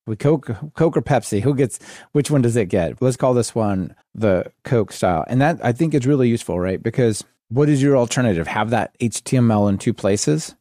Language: English